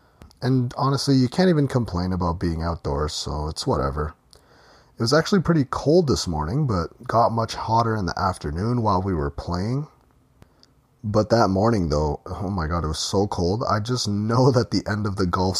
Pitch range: 90-125 Hz